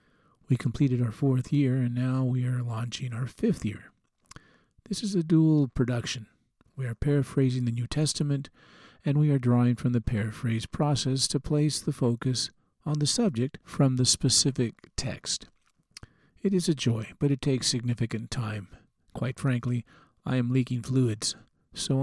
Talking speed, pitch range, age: 160 wpm, 120-150 Hz, 50-69